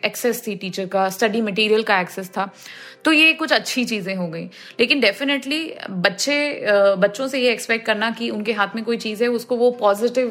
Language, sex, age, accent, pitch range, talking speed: Hindi, female, 20-39, native, 200-250 Hz, 200 wpm